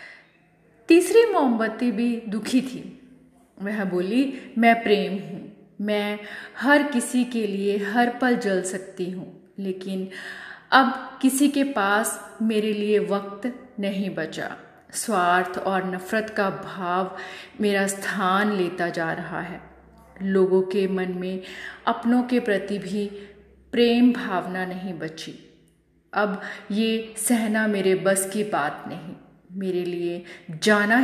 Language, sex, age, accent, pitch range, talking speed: Hindi, female, 30-49, native, 190-240 Hz, 125 wpm